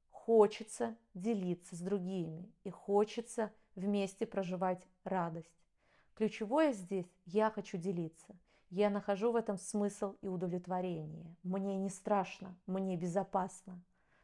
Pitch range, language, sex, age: 185-225 Hz, Russian, female, 30-49